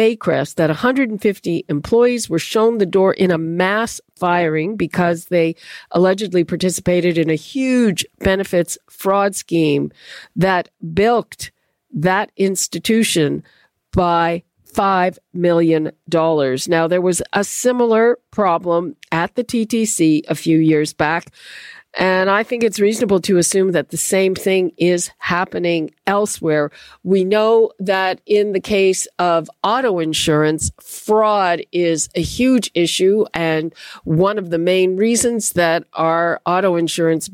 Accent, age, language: American, 50-69, English